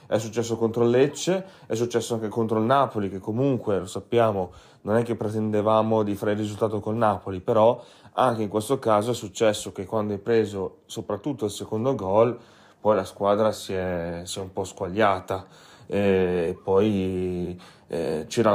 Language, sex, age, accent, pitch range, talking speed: Italian, male, 30-49, native, 105-120 Hz, 175 wpm